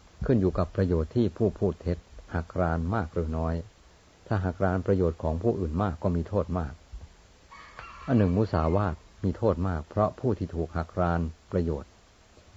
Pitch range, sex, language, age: 85-100 Hz, male, Thai, 60-79